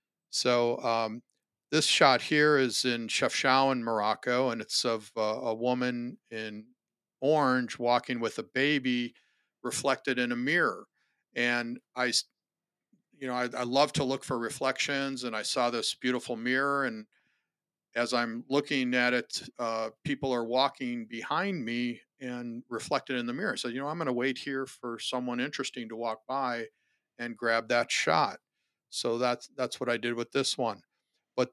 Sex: male